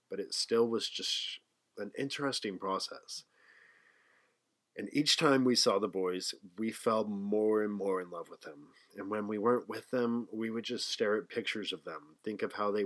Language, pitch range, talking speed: English, 100-130 Hz, 195 wpm